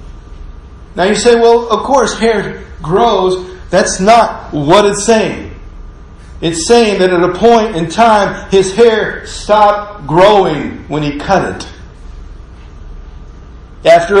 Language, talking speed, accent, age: English, 125 wpm, American, 50-69